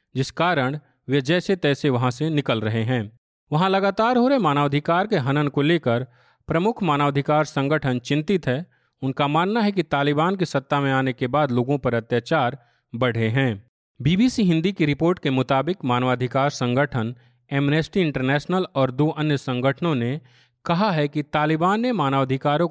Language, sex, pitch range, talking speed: Hindi, male, 130-170 Hz, 160 wpm